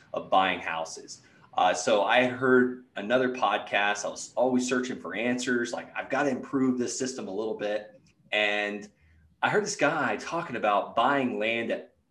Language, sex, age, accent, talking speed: English, male, 20-39, American, 175 wpm